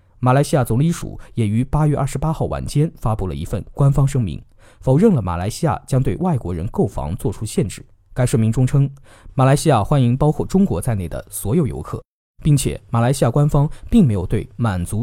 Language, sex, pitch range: Chinese, male, 100-145 Hz